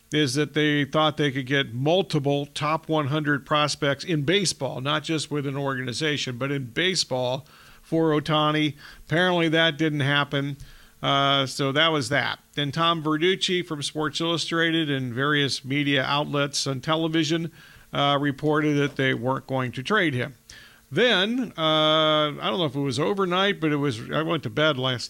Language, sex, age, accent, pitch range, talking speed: English, male, 50-69, American, 140-170 Hz, 165 wpm